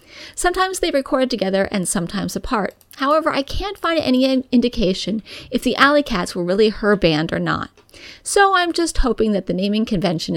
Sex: female